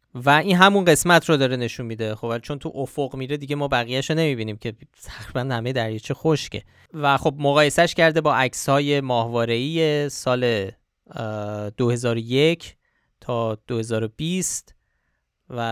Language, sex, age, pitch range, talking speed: Persian, male, 20-39, 115-145 Hz, 140 wpm